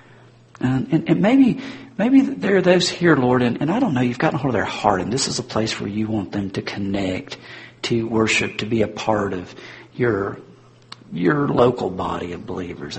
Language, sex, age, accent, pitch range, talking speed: English, male, 50-69, American, 100-130 Hz, 210 wpm